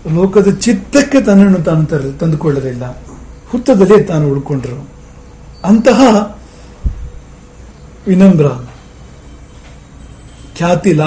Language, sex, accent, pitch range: English, male, Indian, 140-200 Hz